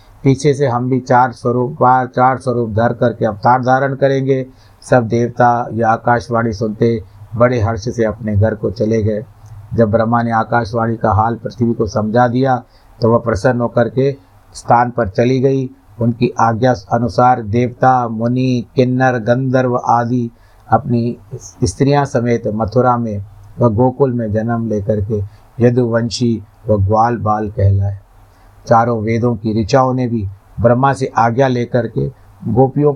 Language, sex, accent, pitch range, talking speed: Hindi, male, native, 110-130 Hz, 150 wpm